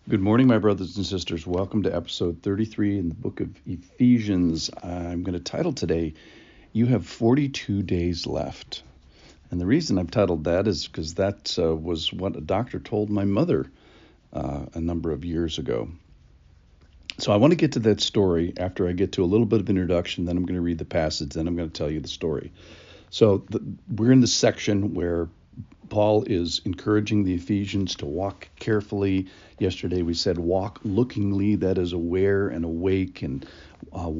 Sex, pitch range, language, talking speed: male, 85-105 Hz, English, 190 wpm